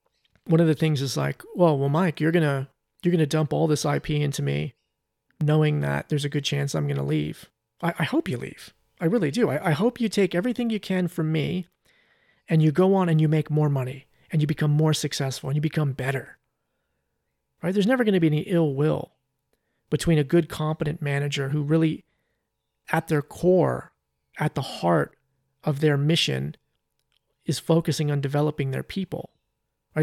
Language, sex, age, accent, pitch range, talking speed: English, male, 30-49, American, 140-175 Hz, 190 wpm